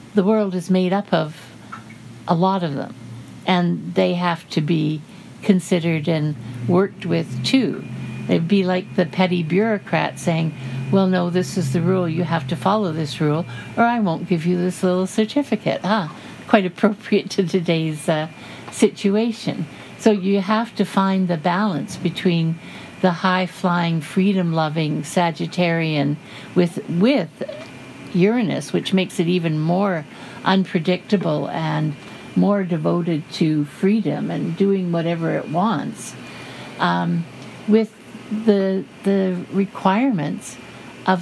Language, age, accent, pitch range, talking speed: English, 60-79, American, 165-195 Hz, 130 wpm